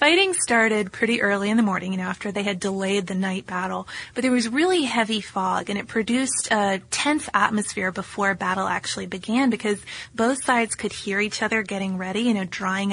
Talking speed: 205 wpm